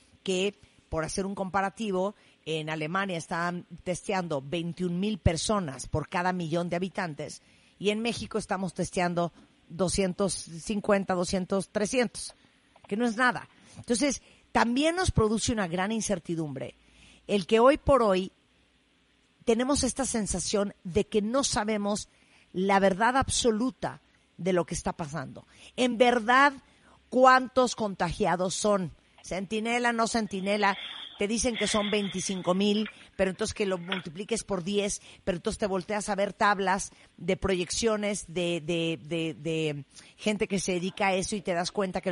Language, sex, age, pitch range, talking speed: Spanish, female, 50-69, 175-215 Hz, 145 wpm